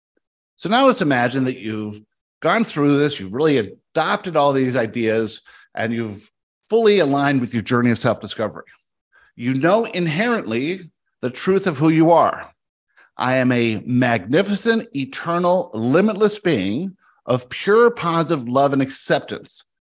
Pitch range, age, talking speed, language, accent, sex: 120-170 Hz, 50-69, 140 wpm, English, American, male